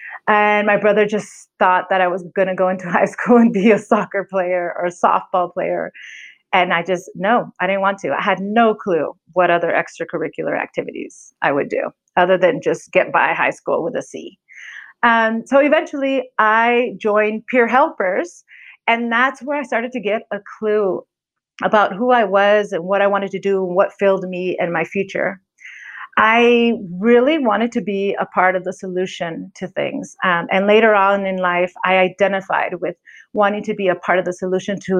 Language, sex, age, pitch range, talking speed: English, female, 30-49, 185-225 Hz, 195 wpm